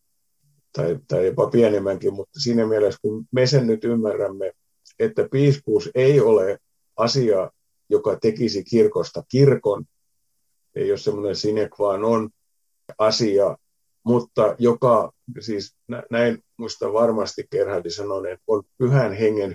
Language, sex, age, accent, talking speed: Finnish, male, 50-69, native, 125 wpm